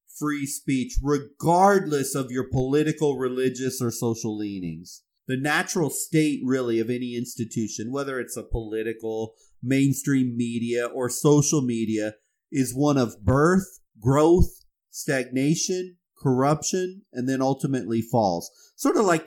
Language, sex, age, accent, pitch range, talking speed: English, male, 30-49, American, 125-170 Hz, 125 wpm